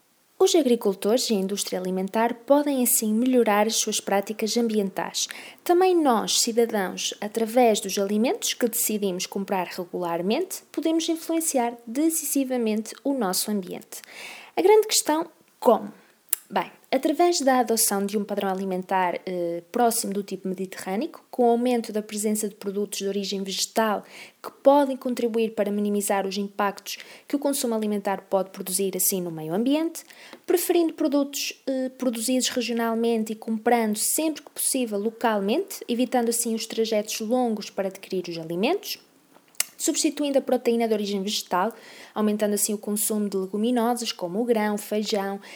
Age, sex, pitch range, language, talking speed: 20-39, female, 200-260 Hz, Portuguese, 145 wpm